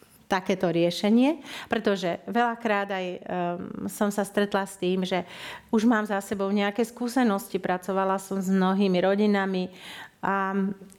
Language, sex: Slovak, female